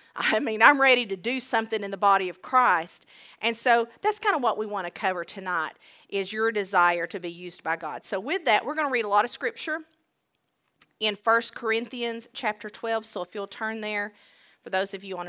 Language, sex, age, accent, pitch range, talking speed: English, female, 40-59, American, 205-300 Hz, 225 wpm